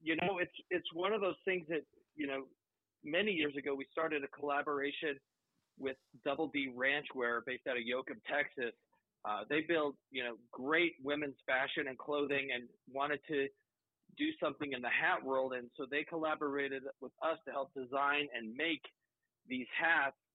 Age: 40-59